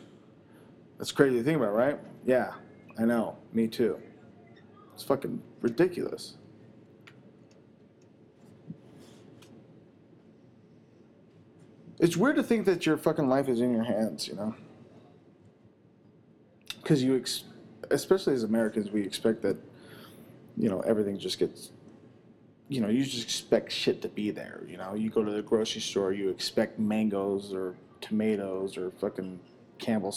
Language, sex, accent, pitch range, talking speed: English, male, American, 110-155 Hz, 130 wpm